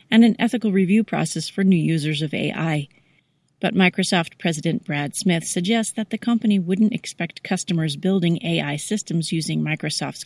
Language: English